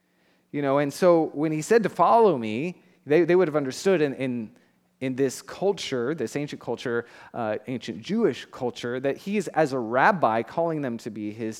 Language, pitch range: English, 145-195 Hz